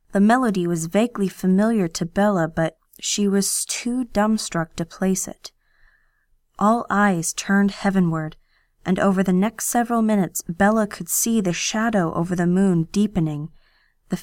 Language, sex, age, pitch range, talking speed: English, female, 20-39, 175-210 Hz, 150 wpm